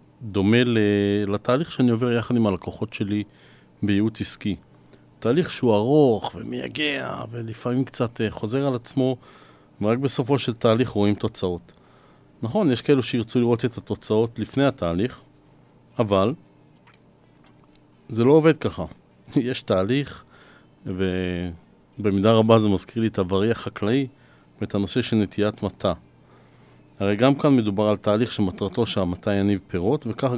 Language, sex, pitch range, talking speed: Hebrew, male, 95-120 Hz, 125 wpm